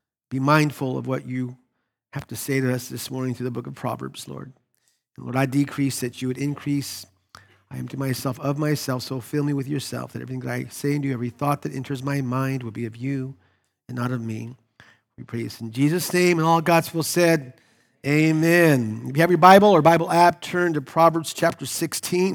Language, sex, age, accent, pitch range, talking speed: English, male, 40-59, American, 135-175 Hz, 220 wpm